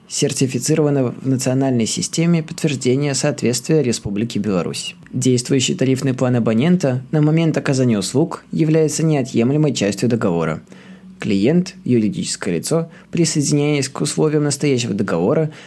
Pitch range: 125-160 Hz